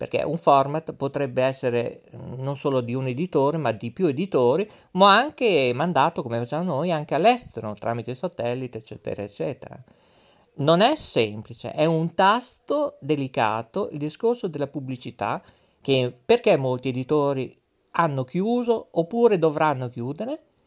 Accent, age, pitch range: native, 50-69, 130-210 Hz